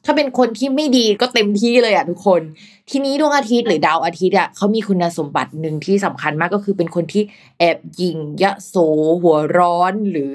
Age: 20-39